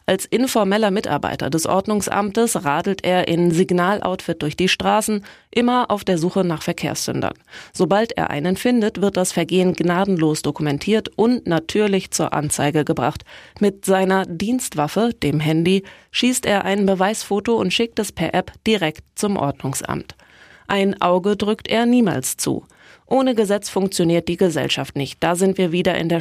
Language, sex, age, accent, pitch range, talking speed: German, female, 20-39, German, 170-210 Hz, 155 wpm